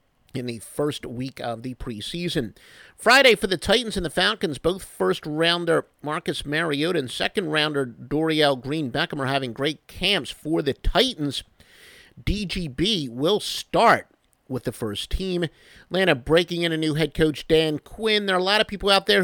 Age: 50-69